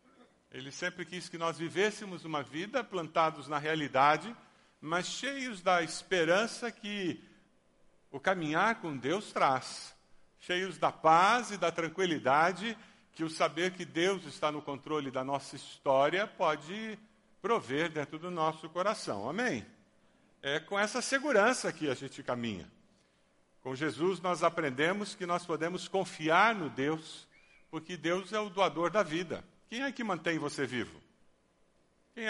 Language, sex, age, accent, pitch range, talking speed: Portuguese, male, 50-69, Brazilian, 155-205 Hz, 145 wpm